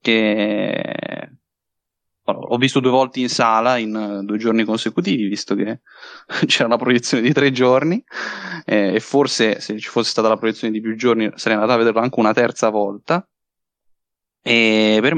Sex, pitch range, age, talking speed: male, 110-125 Hz, 10-29, 160 wpm